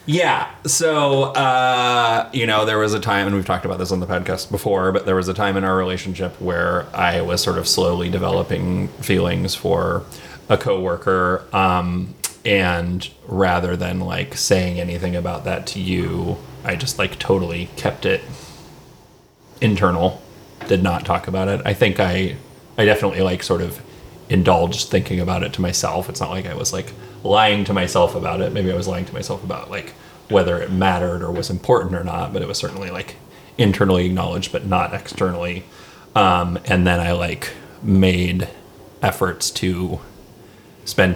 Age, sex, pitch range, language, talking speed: 30-49, male, 90-105 Hz, English, 175 wpm